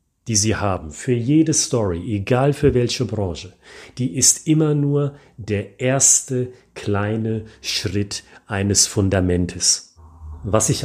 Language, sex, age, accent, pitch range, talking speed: German, male, 40-59, German, 100-130 Hz, 120 wpm